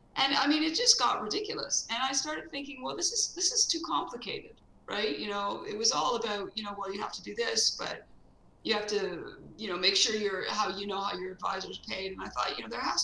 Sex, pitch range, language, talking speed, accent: female, 195-330 Hz, English, 260 wpm, American